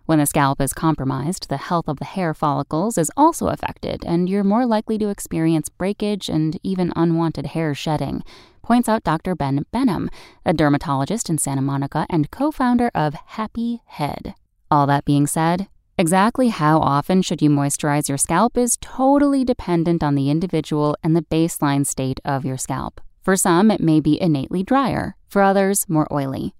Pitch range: 145-215 Hz